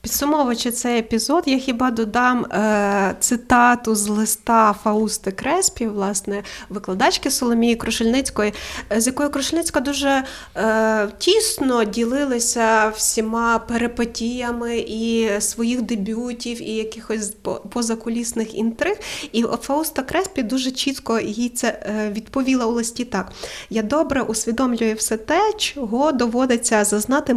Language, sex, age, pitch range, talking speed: Ukrainian, female, 20-39, 210-255 Hz, 110 wpm